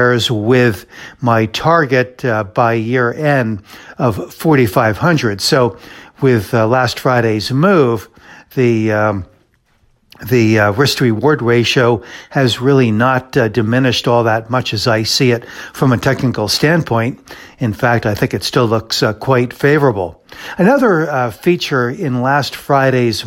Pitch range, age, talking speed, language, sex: 115-135 Hz, 60-79, 140 wpm, English, male